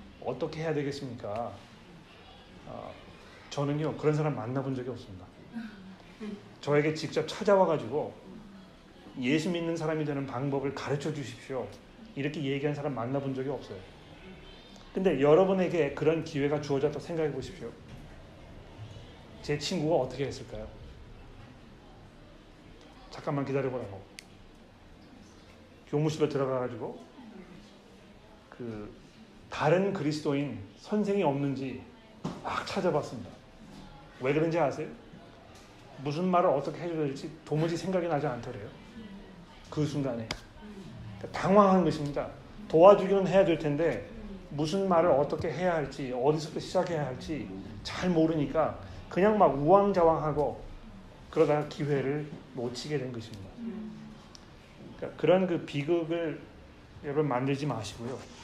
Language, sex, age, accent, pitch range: Korean, male, 30-49, native, 125-165 Hz